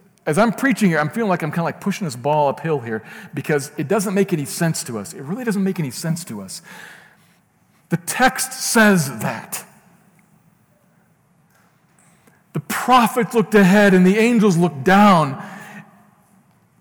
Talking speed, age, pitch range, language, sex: 160 wpm, 50-69, 140-195 Hz, English, male